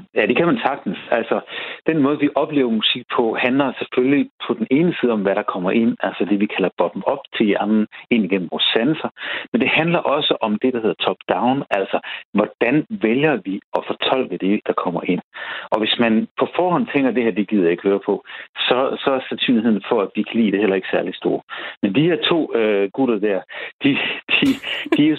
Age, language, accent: 60-79, Danish, native